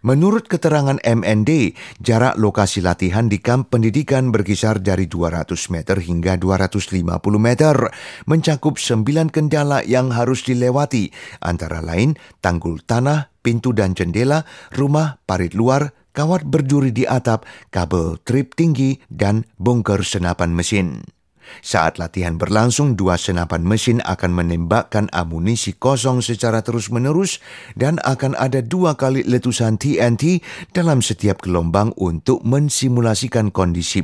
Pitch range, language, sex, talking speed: 95-135 Hz, English, male, 120 wpm